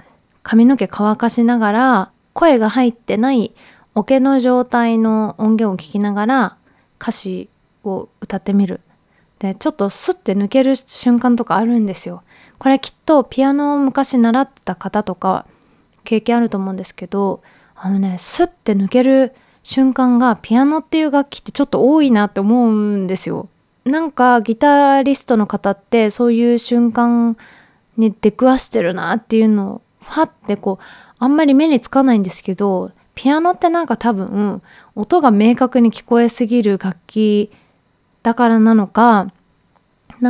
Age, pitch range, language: 20-39, 200-250 Hz, Japanese